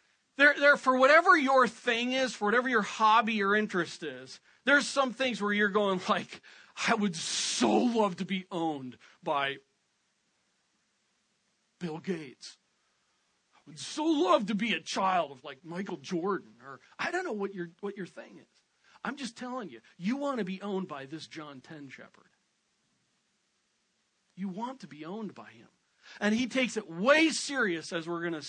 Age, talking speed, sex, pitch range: 40-59, 175 wpm, male, 185-260 Hz